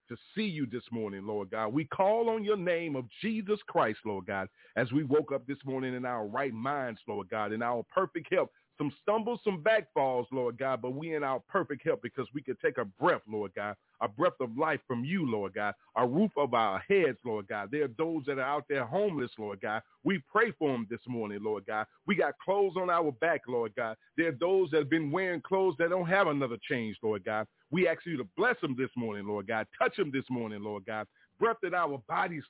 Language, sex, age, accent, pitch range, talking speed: English, male, 40-59, American, 125-205 Hz, 240 wpm